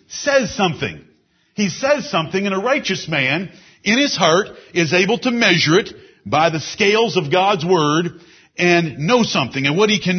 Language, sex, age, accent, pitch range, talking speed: English, male, 50-69, American, 165-230 Hz, 175 wpm